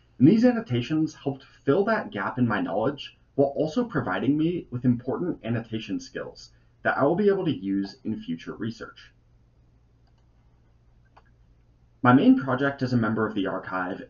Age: 30-49